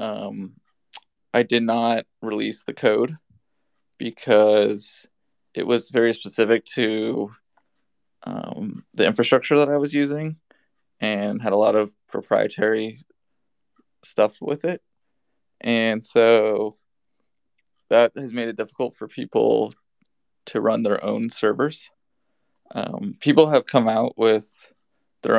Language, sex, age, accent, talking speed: English, male, 20-39, American, 120 wpm